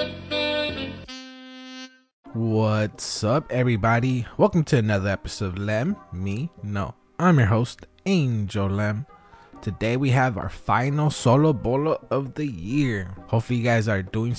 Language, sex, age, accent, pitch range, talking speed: English, male, 20-39, American, 105-135 Hz, 130 wpm